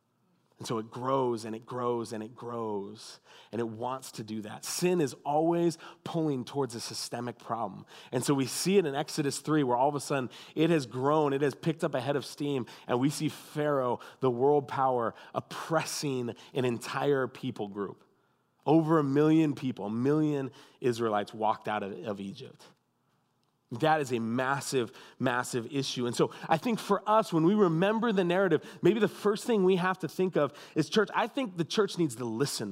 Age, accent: 30-49, American